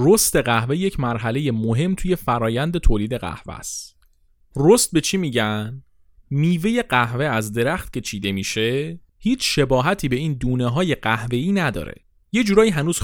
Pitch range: 110-165 Hz